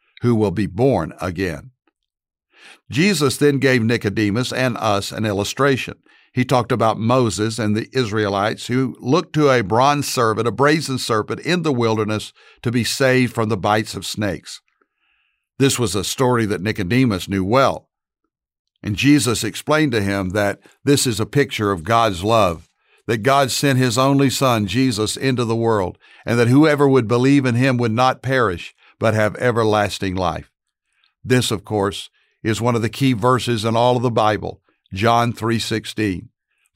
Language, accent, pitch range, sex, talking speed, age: English, American, 105-130 Hz, male, 165 wpm, 60-79